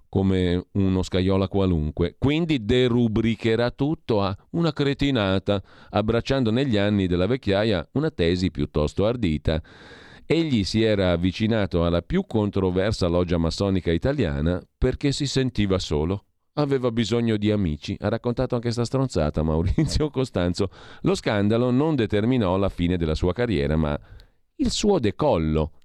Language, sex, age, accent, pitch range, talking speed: Italian, male, 40-59, native, 85-120 Hz, 130 wpm